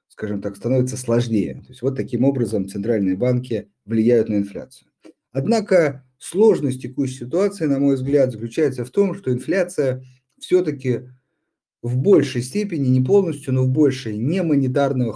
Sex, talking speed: male, 145 wpm